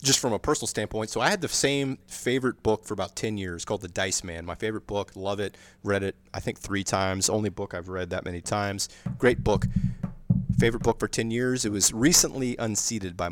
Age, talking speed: 30-49, 225 wpm